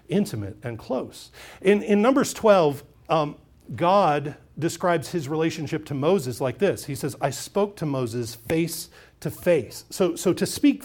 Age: 40-59